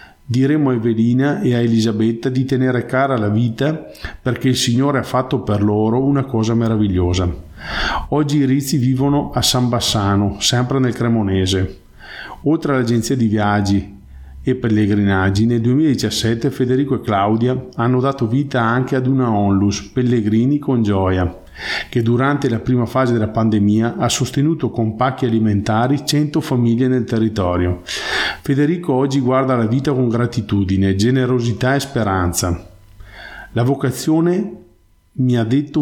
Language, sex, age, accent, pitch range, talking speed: Italian, male, 50-69, native, 100-130 Hz, 140 wpm